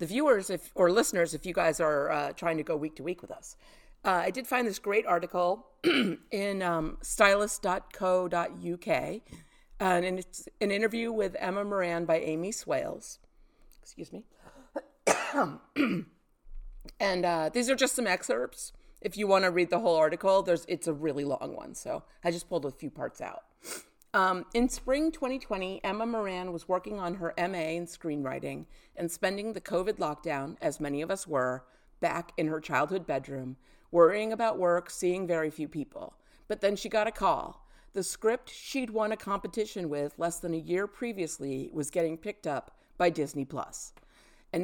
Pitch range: 165-210 Hz